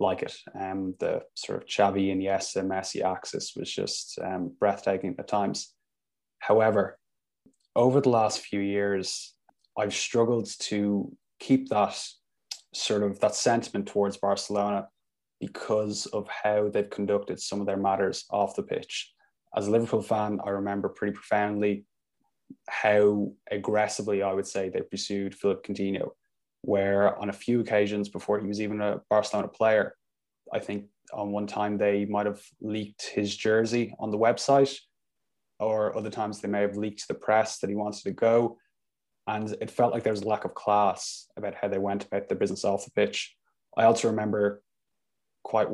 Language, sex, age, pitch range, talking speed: English, male, 20-39, 100-105 Hz, 170 wpm